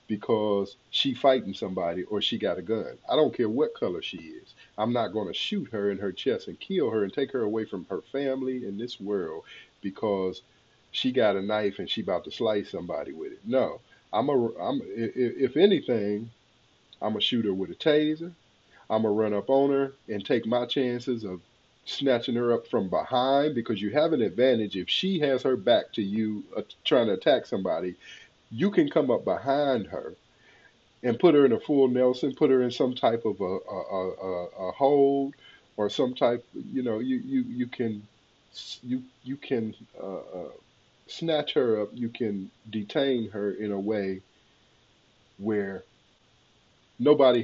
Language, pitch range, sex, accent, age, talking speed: English, 105-135 Hz, male, American, 40-59, 185 wpm